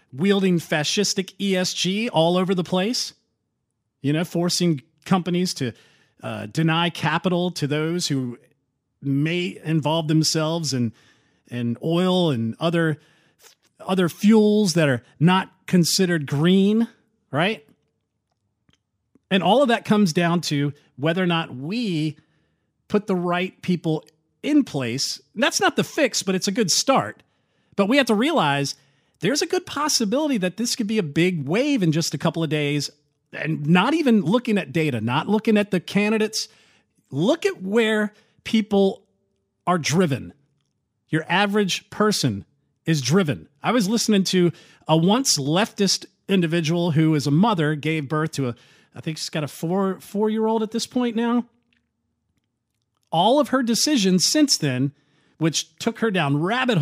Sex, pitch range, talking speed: male, 150-210 Hz, 155 wpm